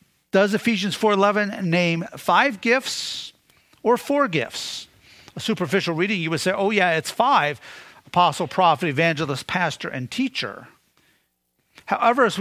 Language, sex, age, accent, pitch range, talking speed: English, male, 50-69, American, 160-210 Hz, 125 wpm